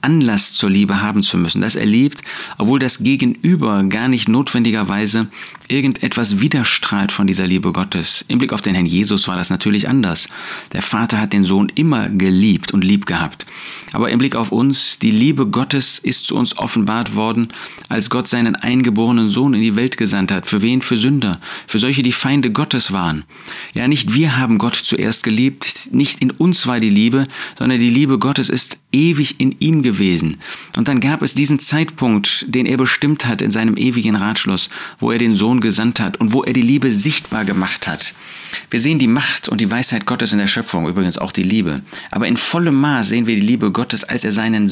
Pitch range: 105-140 Hz